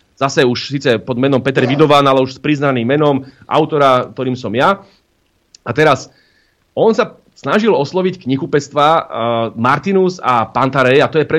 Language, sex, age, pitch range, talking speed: Slovak, male, 30-49, 135-175 Hz, 160 wpm